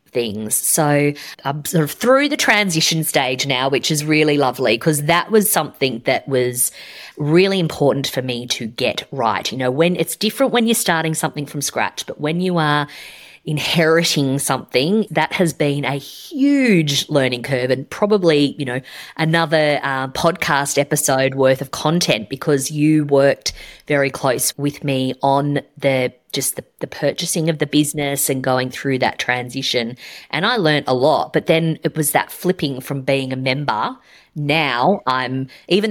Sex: female